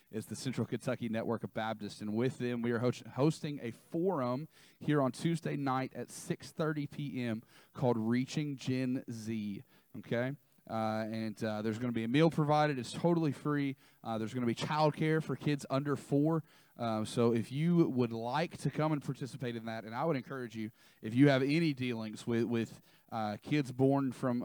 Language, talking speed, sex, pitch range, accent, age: English, 195 wpm, male, 115-145 Hz, American, 30-49